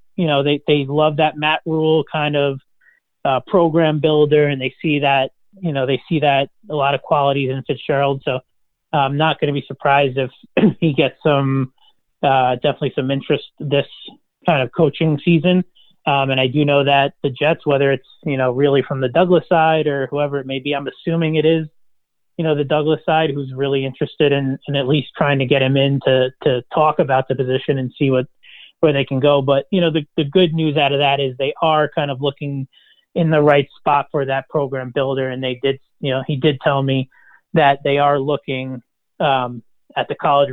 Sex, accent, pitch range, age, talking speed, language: male, American, 135-155 Hz, 30-49, 215 wpm, English